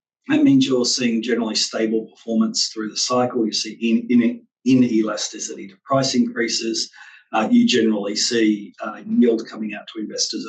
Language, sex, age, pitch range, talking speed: English, male, 40-59, 110-145 Hz, 165 wpm